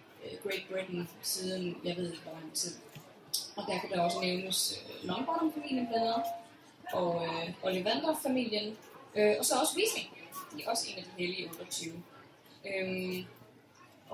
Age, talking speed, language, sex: 20-39, 155 wpm, Danish, female